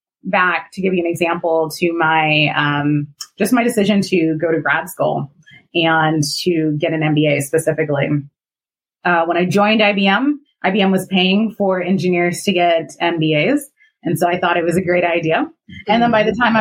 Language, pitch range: English, 160-200 Hz